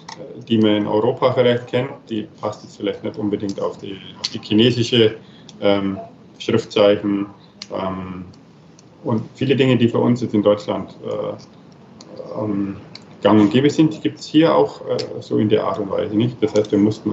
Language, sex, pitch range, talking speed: German, male, 105-120 Hz, 180 wpm